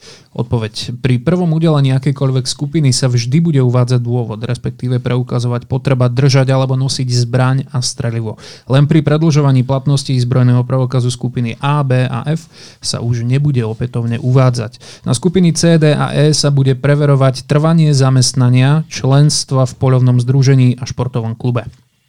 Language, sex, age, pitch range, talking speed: Slovak, male, 30-49, 125-145 Hz, 145 wpm